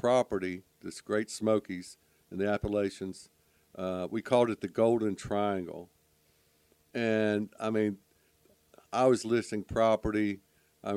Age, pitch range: 60-79, 90-115 Hz